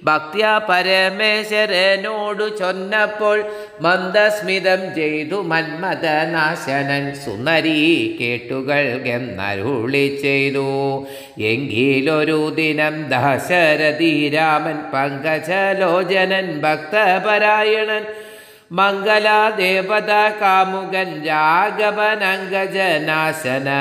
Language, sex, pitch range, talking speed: Malayalam, male, 145-200 Hz, 50 wpm